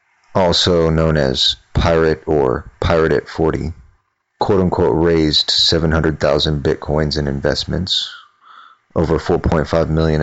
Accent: American